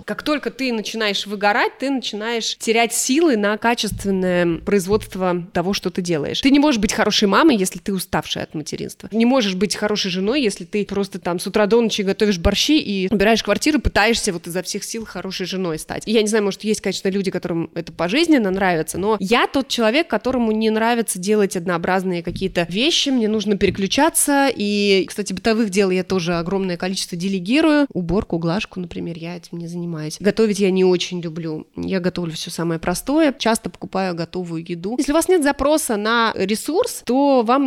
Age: 20-39